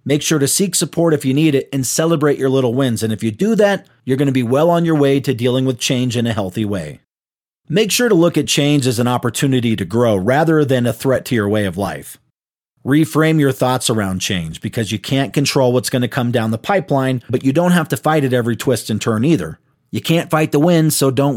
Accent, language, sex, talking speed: American, English, male, 255 wpm